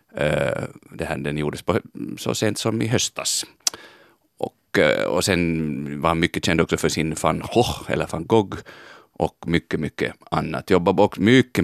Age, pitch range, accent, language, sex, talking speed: 30-49, 80-105 Hz, Finnish, Swedish, male, 170 wpm